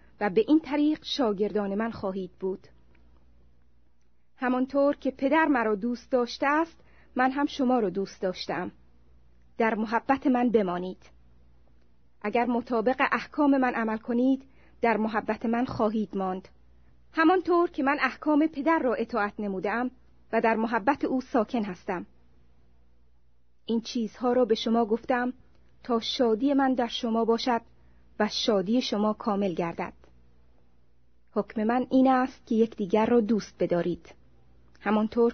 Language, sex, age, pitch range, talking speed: Persian, female, 30-49, 165-250 Hz, 130 wpm